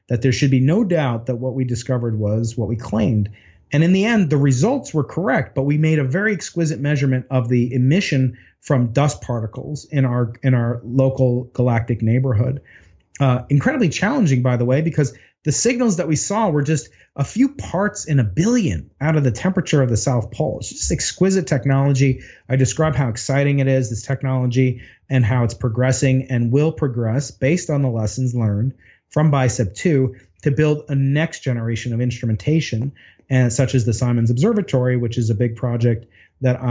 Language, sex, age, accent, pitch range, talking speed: English, male, 30-49, American, 120-145 Hz, 190 wpm